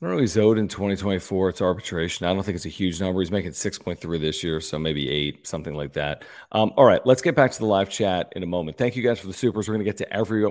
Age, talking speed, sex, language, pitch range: 40-59, 295 wpm, male, English, 90-105 Hz